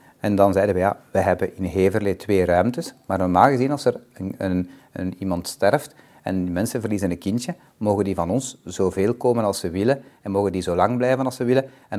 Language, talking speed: Dutch, 230 wpm